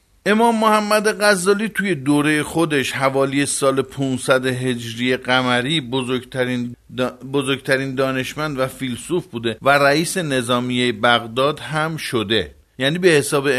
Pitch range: 115-160 Hz